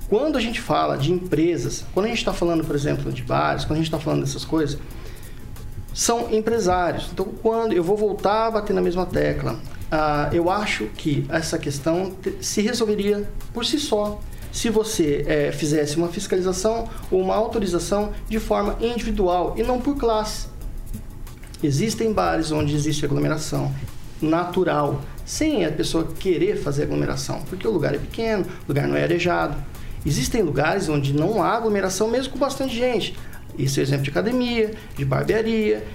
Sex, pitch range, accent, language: male, 150-215 Hz, Brazilian, Portuguese